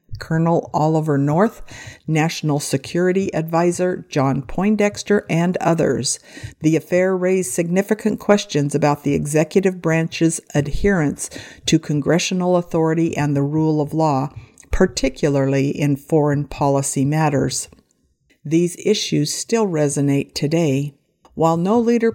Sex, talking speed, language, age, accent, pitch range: female, 110 wpm, English, 50-69, American, 145-180 Hz